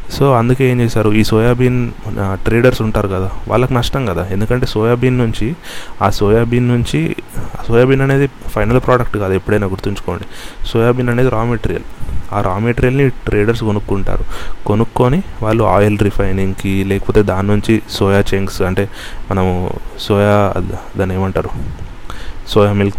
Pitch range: 100-120 Hz